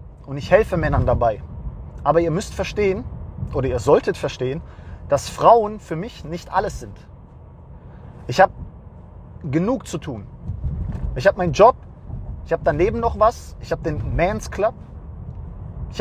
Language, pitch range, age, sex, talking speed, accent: English, 115-190 Hz, 30-49, male, 150 wpm, German